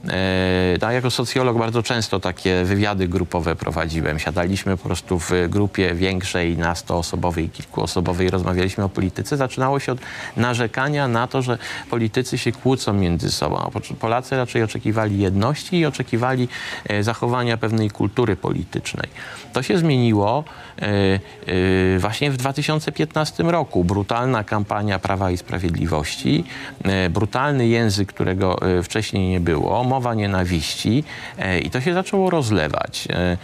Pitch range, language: 95-125 Hz, Polish